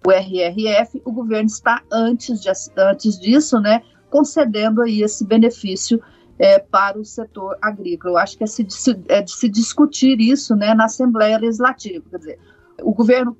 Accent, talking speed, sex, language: Brazilian, 150 wpm, female, Portuguese